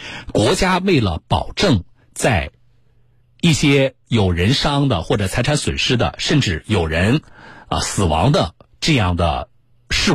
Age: 50-69